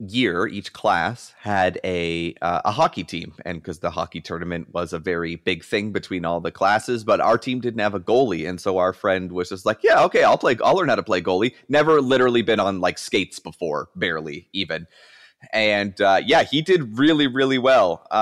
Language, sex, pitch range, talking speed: English, male, 100-125 Hz, 210 wpm